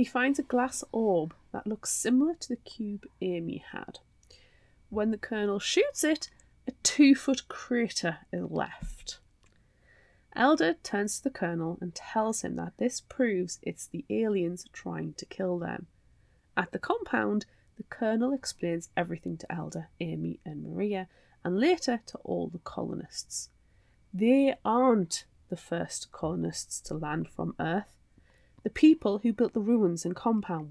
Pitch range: 170-240 Hz